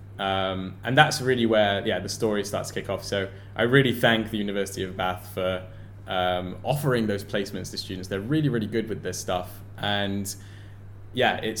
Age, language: 10-29, English